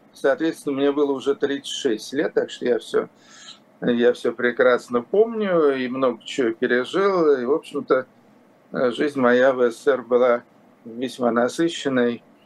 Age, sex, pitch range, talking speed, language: 50-69, male, 135-205 Hz, 130 wpm, Russian